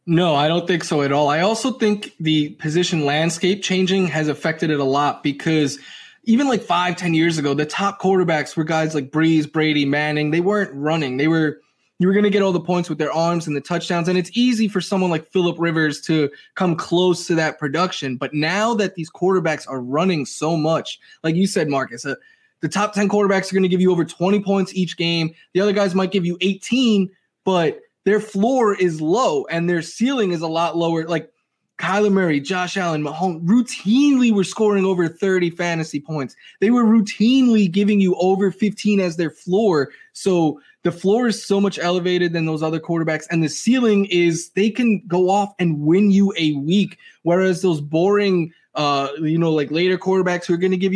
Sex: male